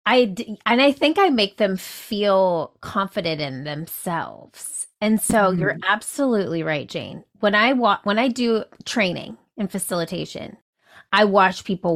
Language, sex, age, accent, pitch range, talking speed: English, female, 30-49, American, 165-215 Hz, 150 wpm